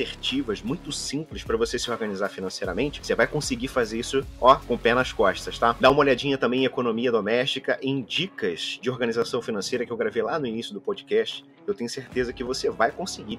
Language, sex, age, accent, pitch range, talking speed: Portuguese, male, 30-49, Brazilian, 130-210 Hz, 195 wpm